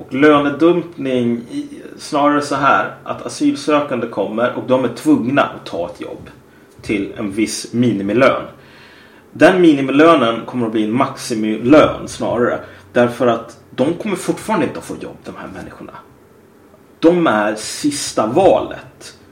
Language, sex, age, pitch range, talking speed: Swedish, male, 30-49, 110-160 Hz, 135 wpm